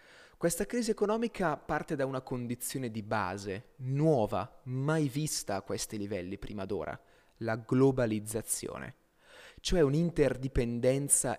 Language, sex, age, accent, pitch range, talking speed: Italian, male, 20-39, native, 110-150 Hz, 110 wpm